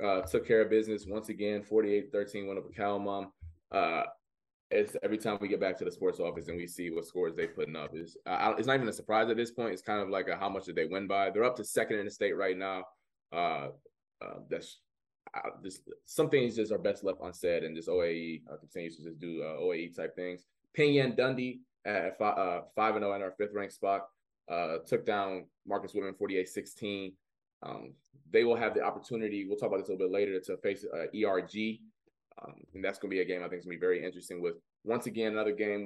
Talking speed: 240 wpm